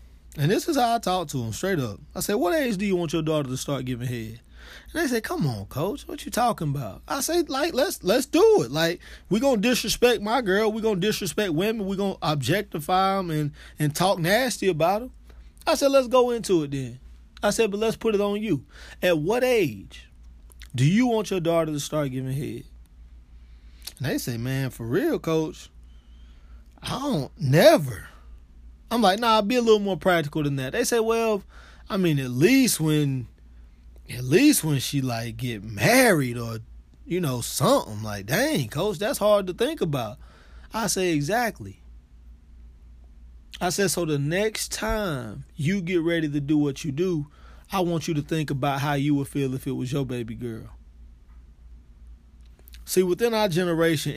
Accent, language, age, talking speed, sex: American, English, 20-39, 195 wpm, male